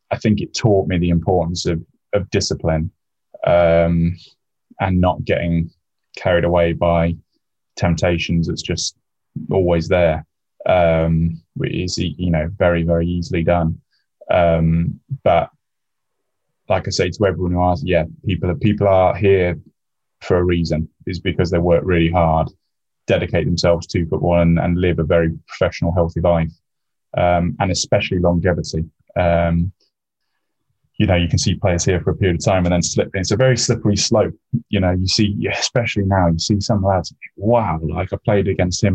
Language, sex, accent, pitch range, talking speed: English, male, British, 85-95 Hz, 165 wpm